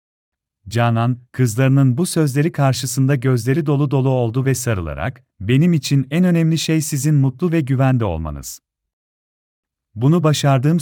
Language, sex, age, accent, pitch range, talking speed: Turkish, male, 40-59, native, 110-145 Hz, 130 wpm